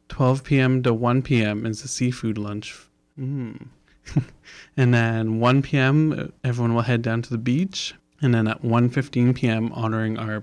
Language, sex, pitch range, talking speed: English, male, 115-135 Hz, 165 wpm